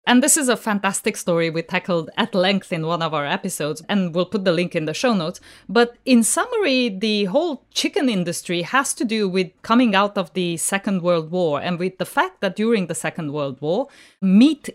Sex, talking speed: female, 215 wpm